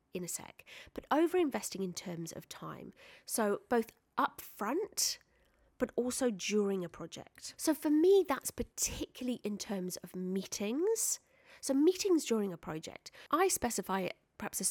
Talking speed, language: 145 wpm, English